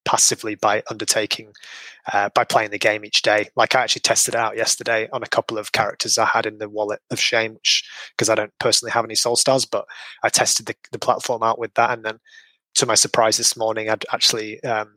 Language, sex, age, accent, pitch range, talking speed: English, male, 20-39, British, 110-125 Hz, 225 wpm